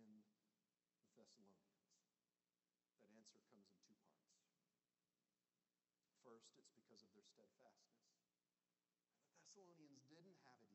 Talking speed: 95 wpm